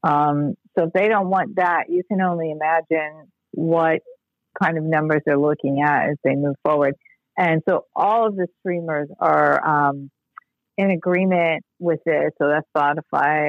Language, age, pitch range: English, 50-69, 150-190 Hz